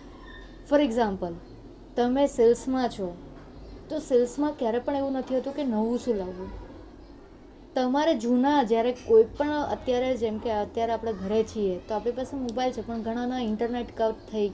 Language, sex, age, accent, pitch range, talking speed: Gujarati, female, 20-39, native, 220-275 Hz, 125 wpm